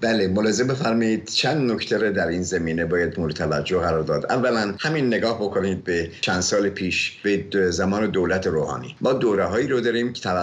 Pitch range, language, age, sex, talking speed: 90-110 Hz, English, 50-69, male, 180 wpm